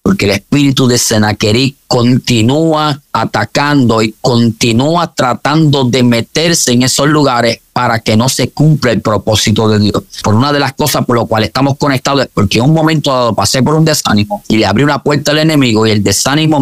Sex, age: male, 30-49